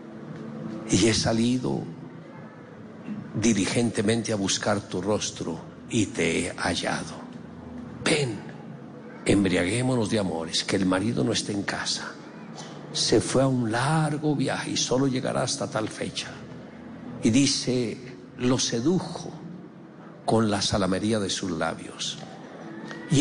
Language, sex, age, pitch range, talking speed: Spanish, male, 60-79, 105-150 Hz, 120 wpm